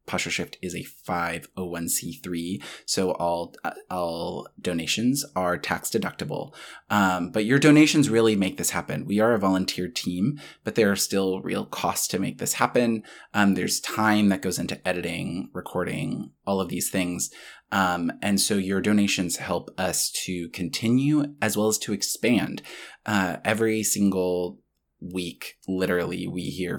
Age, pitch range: 20-39, 90-105 Hz